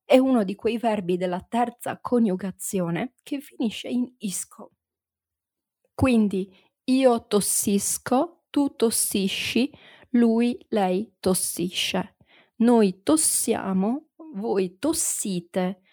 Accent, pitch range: native, 190-235 Hz